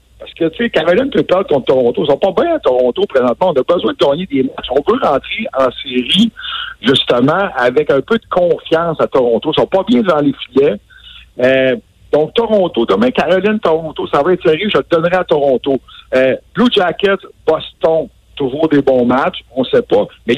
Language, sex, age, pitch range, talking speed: French, male, 60-79, 135-200 Hz, 215 wpm